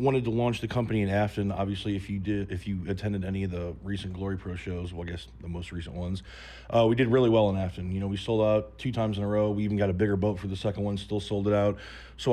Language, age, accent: English, 20-39, American